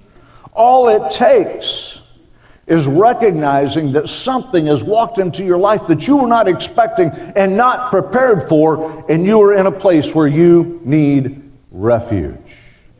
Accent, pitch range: American, 155-215 Hz